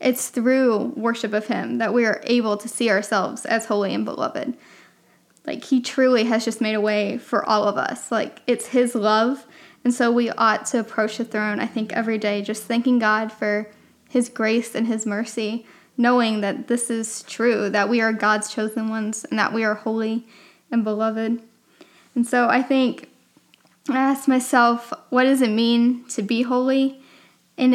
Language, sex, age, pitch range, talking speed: English, female, 10-29, 225-250 Hz, 185 wpm